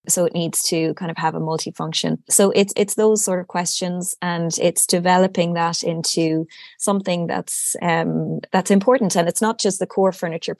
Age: 20-39